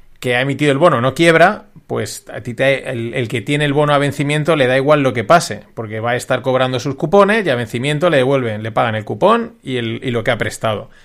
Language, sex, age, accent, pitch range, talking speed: Spanish, male, 30-49, Spanish, 125-155 Hz, 260 wpm